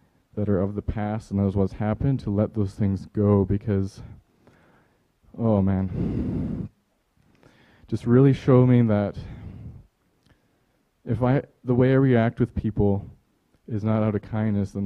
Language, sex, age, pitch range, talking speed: English, male, 20-39, 100-115 Hz, 145 wpm